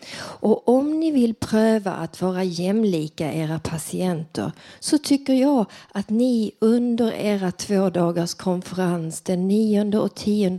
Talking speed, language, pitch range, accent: 135 wpm, Swedish, 160-210 Hz, native